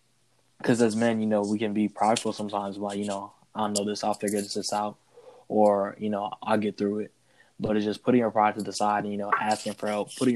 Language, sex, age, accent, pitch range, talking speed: English, male, 10-29, American, 105-110 Hz, 260 wpm